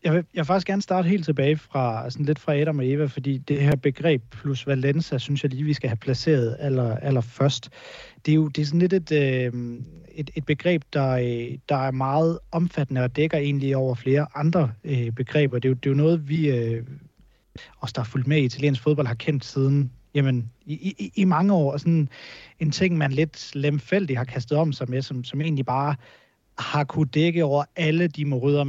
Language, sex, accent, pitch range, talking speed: Danish, male, native, 125-150 Hz, 205 wpm